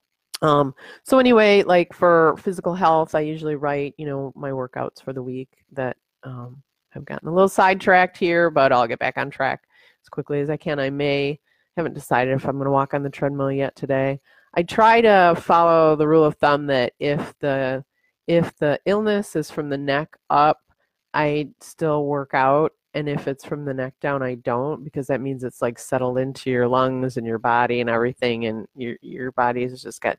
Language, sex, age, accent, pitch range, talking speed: English, female, 30-49, American, 130-165 Hz, 205 wpm